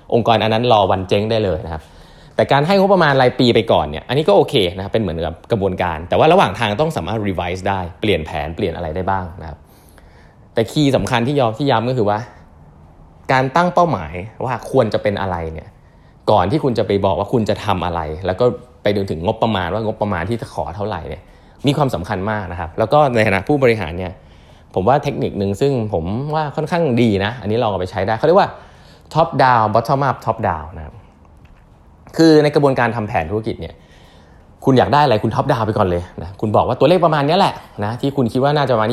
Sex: male